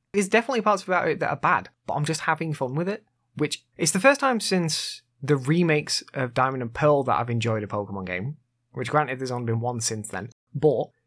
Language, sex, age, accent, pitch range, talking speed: English, male, 20-39, British, 125-170 Hz, 230 wpm